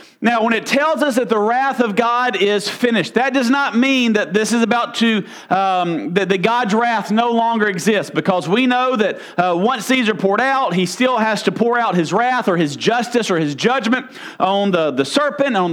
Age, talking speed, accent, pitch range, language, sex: 40-59, 215 wpm, American, 210-260 Hz, English, male